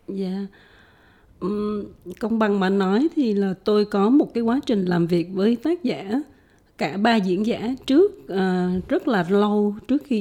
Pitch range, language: 185-245 Hz, Vietnamese